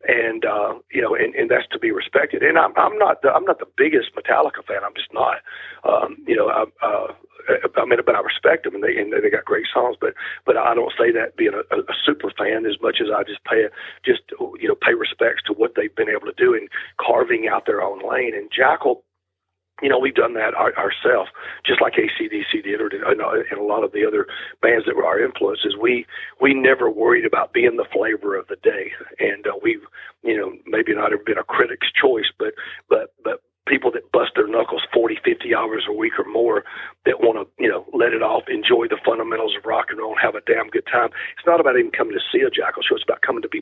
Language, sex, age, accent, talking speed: English, male, 40-59, American, 250 wpm